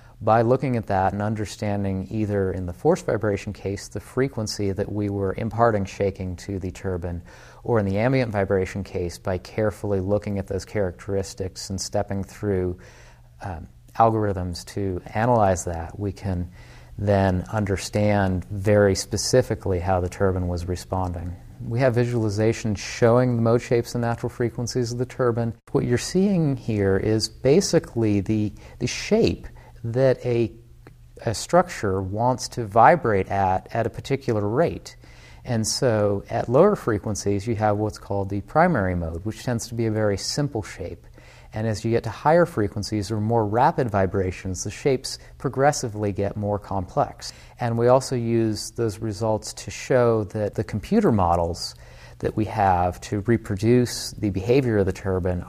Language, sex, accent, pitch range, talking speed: English, male, American, 95-115 Hz, 160 wpm